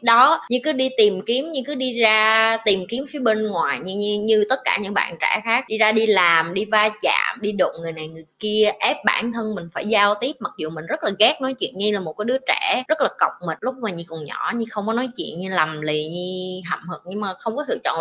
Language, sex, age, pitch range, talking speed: Vietnamese, female, 20-39, 185-250 Hz, 280 wpm